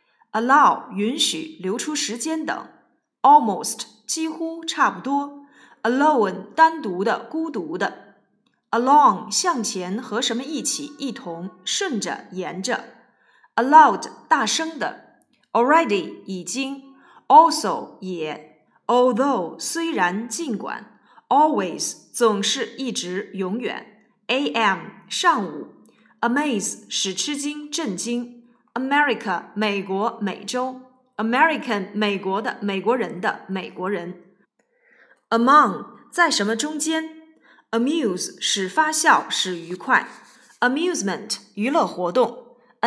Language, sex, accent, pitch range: Chinese, female, native, 210-310 Hz